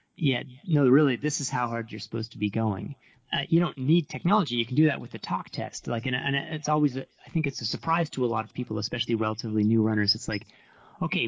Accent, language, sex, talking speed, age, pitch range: American, English, male, 250 wpm, 30-49, 115-150 Hz